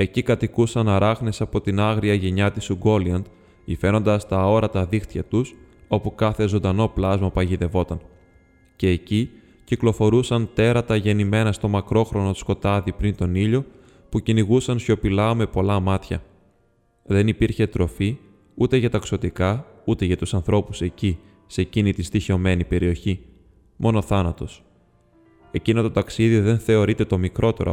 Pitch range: 95-110 Hz